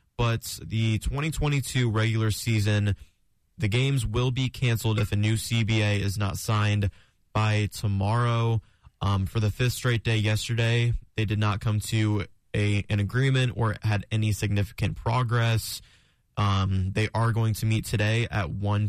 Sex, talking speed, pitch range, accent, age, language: male, 150 wpm, 105-115 Hz, American, 20-39, English